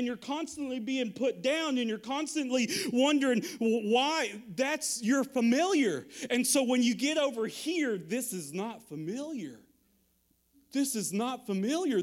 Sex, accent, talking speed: male, American, 145 wpm